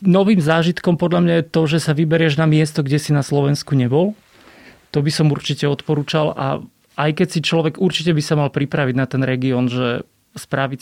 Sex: male